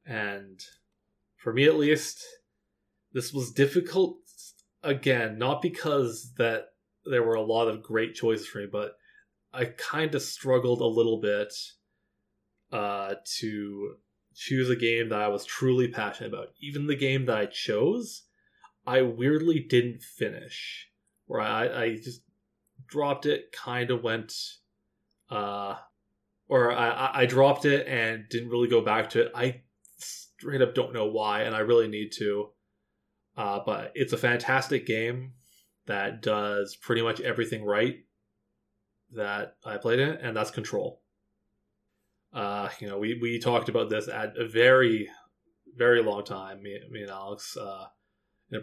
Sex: male